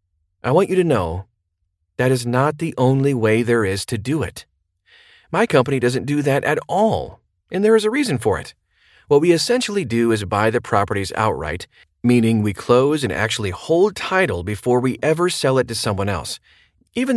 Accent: American